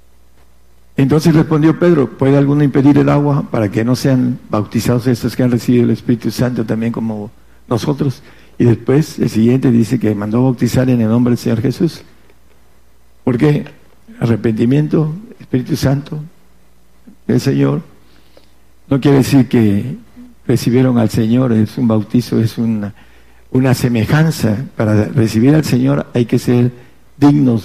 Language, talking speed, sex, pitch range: Spanish, 145 wpm, male, 95-130 Hz